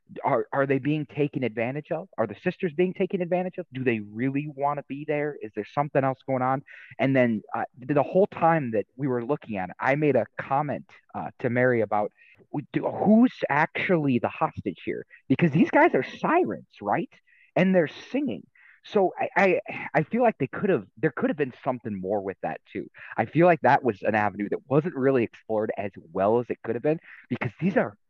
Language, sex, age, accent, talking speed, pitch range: English, male, 30-49, American, 215 wpm, 125-180 Hz